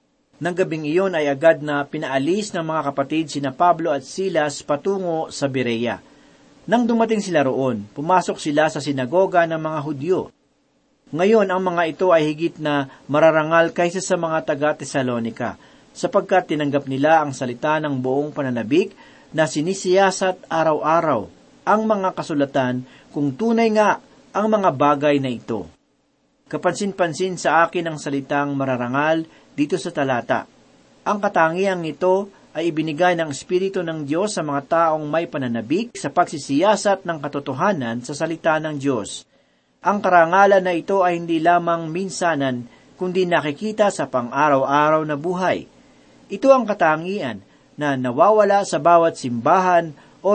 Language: Filipino